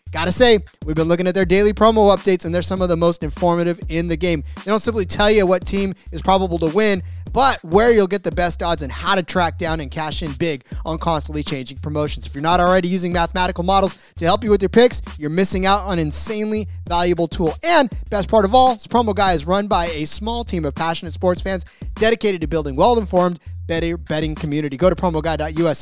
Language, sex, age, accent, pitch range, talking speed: English, male, 30-49, American, 165-215 Hz, 230 wpm